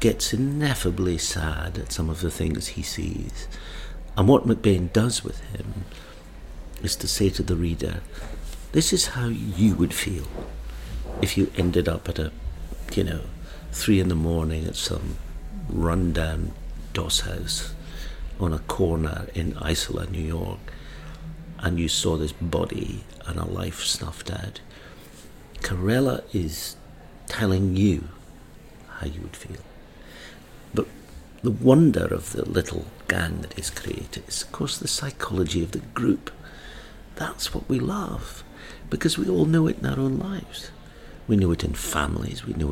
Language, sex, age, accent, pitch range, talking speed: English, male, 60-79, British, 80-105 Hz, 150 wpm